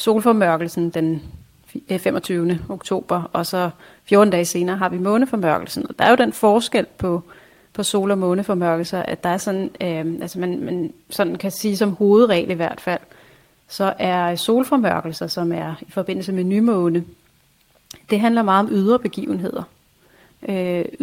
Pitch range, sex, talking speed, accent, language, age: 175-210 Hz, female, 160 wpm, native, Danish, 30-49